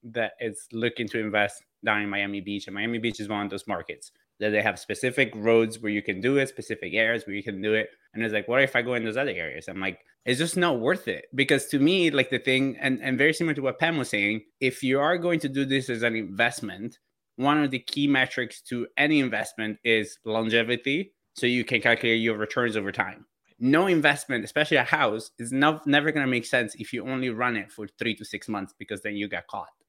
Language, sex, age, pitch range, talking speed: English, male, 20-39, 110-140 Hz, 245 wpm